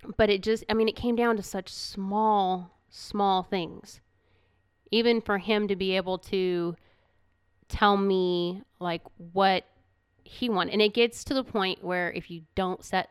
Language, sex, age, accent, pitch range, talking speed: English, female, 30-49, American, 175-205 Hz, 170 wpm